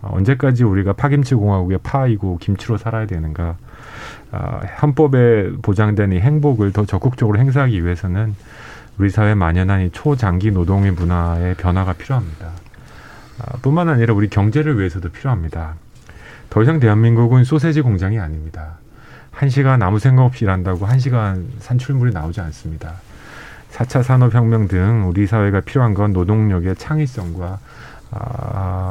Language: Korean